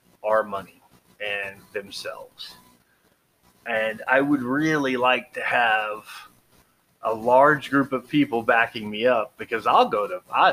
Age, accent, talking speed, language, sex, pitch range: 30-49, American, 130 wpm, English, male, 110-155 Hz